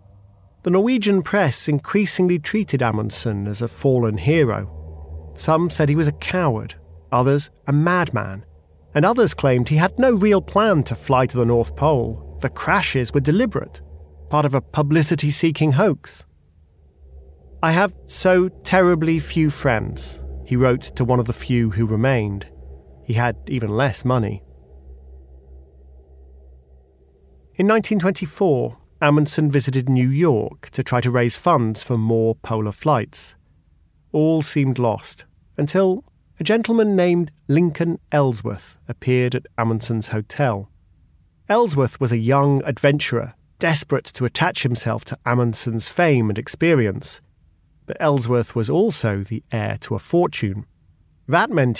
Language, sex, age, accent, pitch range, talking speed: English, male, 40-59, British, 95-150 Hz, 135 wpm